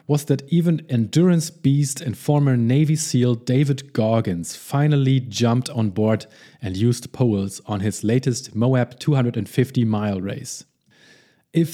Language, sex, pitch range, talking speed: English, male, 115-145 Hz, 135 wpm